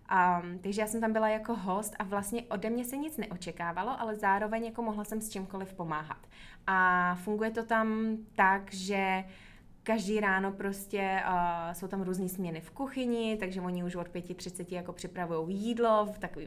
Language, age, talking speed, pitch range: Czech, 20-39, 180 wpm, 180-210 Hz